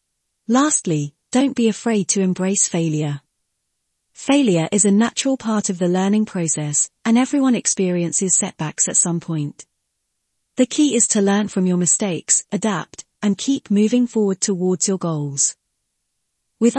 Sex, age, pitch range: female, 30-49, 170-230 Hz